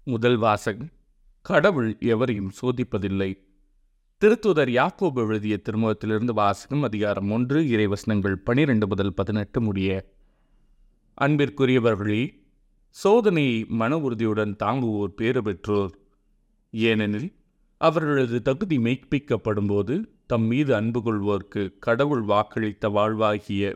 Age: 30-49